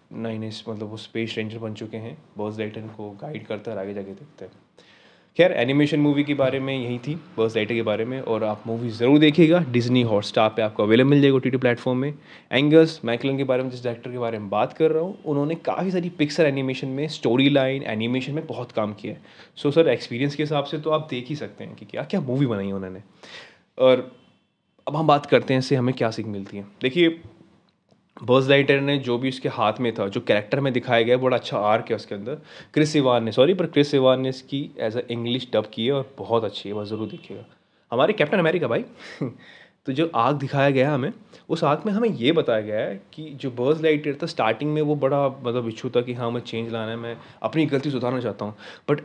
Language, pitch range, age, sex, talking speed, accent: Hindi, 115-145 Hz, 20-39, male, 235 wpm, native